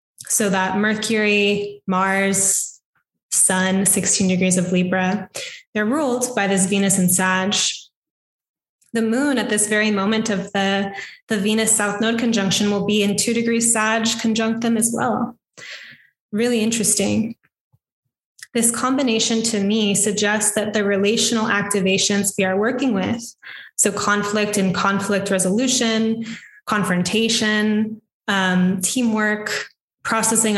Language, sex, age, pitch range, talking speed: English, female, 10-29, 195-225 Hz, 125 wpm